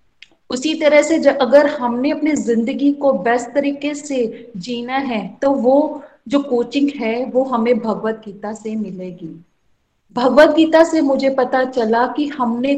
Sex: female